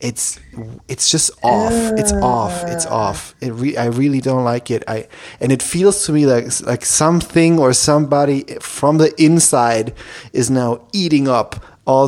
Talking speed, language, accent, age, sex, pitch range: 175 wpm, English, German, 30-49, male, 110-135 Hz